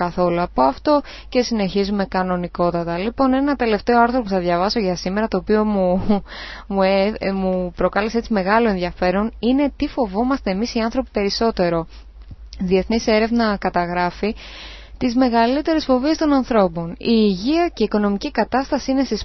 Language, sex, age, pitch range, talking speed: English, female, 20-39, 185-235 Hz, 150 wpm